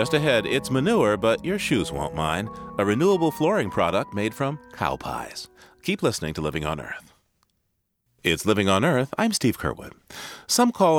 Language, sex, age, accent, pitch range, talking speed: English, male, 40-59, American, 90-150 Hz, 175 wpm